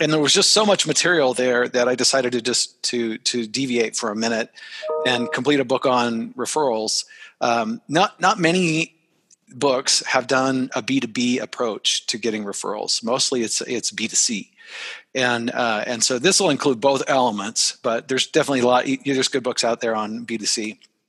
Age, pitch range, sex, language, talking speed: 40-59, 120-150 Hz, male, English, 180 wpm